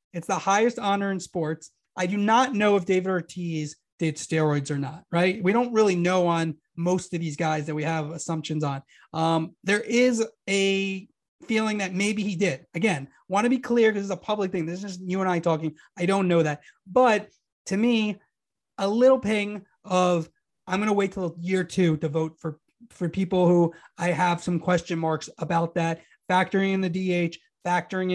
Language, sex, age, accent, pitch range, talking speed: English, male, 30-49, American, 170-205 Hz, 200 wpm